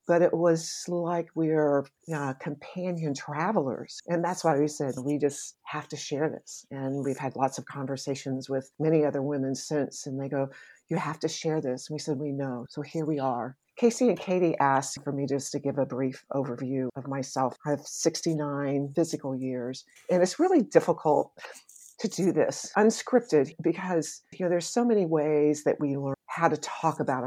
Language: English